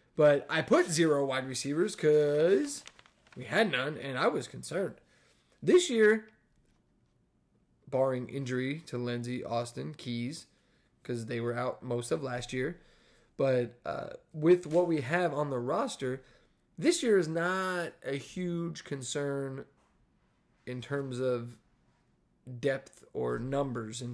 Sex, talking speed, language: male, 130 wpm, English